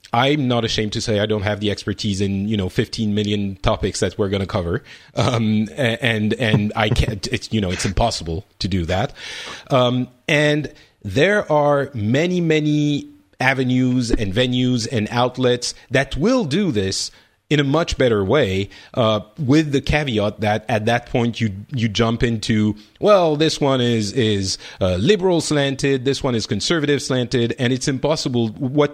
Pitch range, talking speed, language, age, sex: 105-140 Hz, 170 wpm, English, 30-49, male